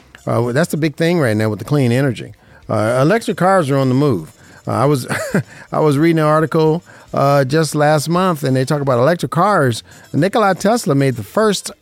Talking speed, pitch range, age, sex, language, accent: 210 wpm, 125-170 Hz, 50-69, male, English, American